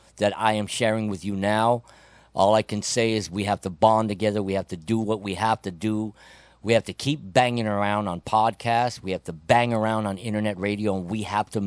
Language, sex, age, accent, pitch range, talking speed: English, male, 50-69, American, 100-115 Hz, 235 wpm